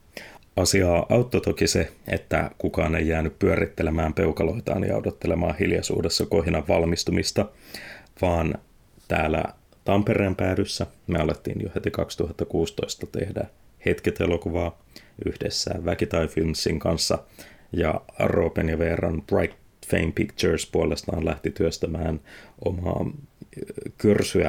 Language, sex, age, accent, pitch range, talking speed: Finnish, male, 30-49, native, 80-100 Hz, 100 wpm